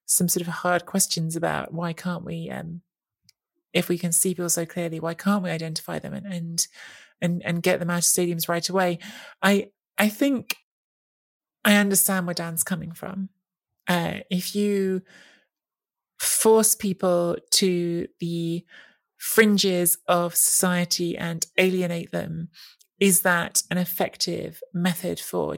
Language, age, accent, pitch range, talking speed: English, 30-49, British, 175-195 Hz, 145 wpm